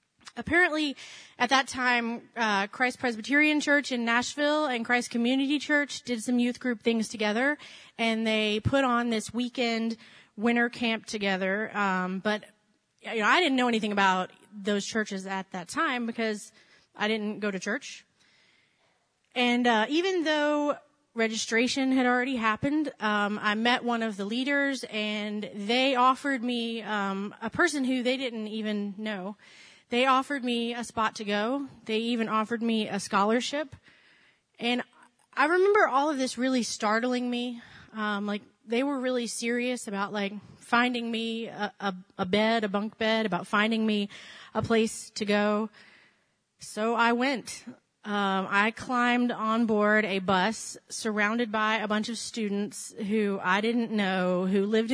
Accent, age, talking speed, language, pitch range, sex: American, 30-49, 155 wpm, English, 210-245 Hz, female